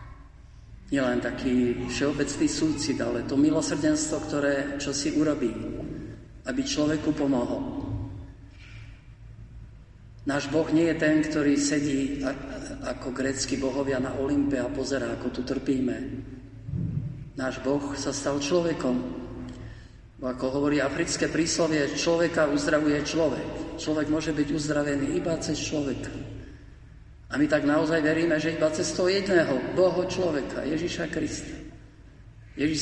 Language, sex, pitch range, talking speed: Slovak, male, 125-155 Hz, 120 wpm